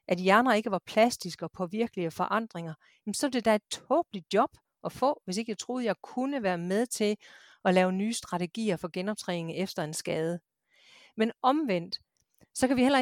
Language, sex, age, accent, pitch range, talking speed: Danish, female, 40-59, native, 180-230 Hz, 190 wpm